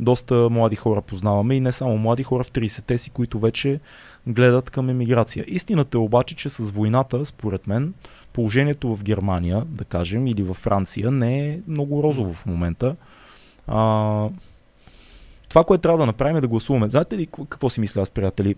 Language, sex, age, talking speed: Bulgarian, male, 20-39, 180 wpm